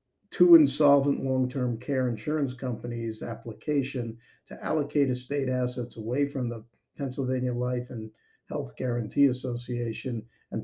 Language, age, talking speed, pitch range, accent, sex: English, 50-69, 120 wpm, 120-135 Hz, American, male